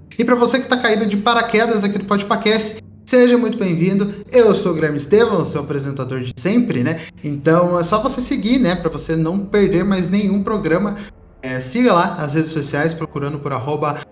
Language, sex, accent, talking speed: Portuguese, male, Brazilian, 200 wpm